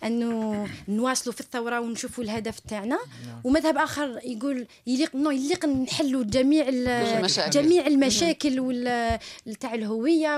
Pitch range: 250-340 Hz